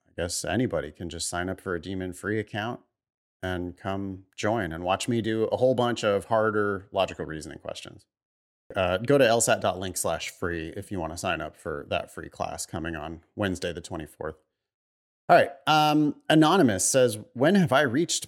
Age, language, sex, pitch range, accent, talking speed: 30-49, English, male, 100-145 Hz, American, 180 wpm